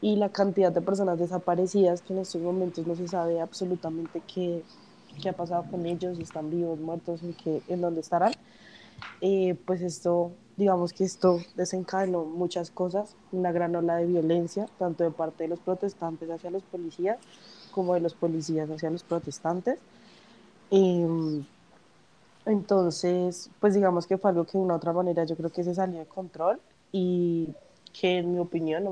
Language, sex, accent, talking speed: Spanish, female, Colombian, 170 wpm